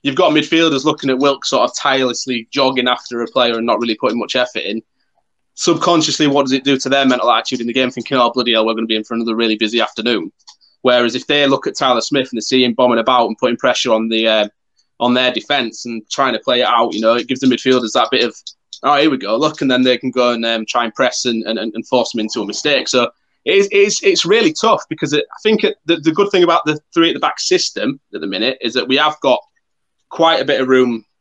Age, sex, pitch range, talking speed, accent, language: 20-39, male, 115-140 Hz, 275 wpm, British, English